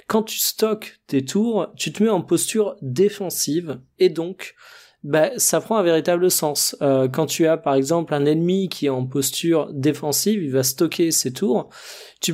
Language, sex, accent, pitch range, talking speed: French, male, French, 140-190 Hz, 185 wpm